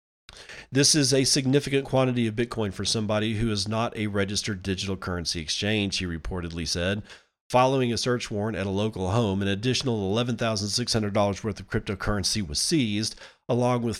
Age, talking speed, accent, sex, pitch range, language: 40-59, 165 wpm, American, male, 95-125 Hz, English